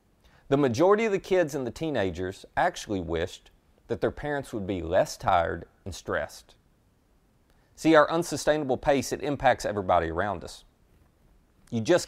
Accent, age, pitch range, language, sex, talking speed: American, 30-49, 100-155 Hz, English, male, 150 wpm